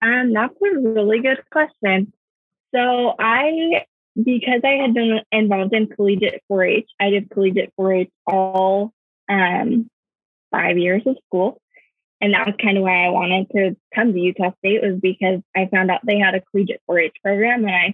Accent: American